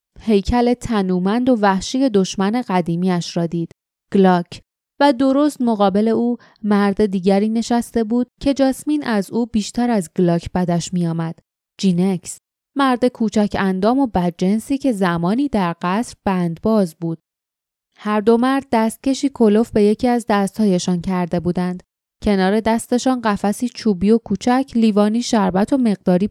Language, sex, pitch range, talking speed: Persian, female, 190-240 Hz, 135 wpm